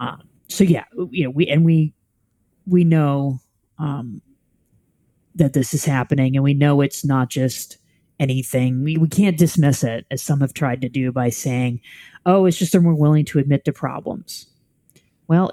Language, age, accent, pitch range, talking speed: English, 30-49, American, 130-165 Hz, 180 wpm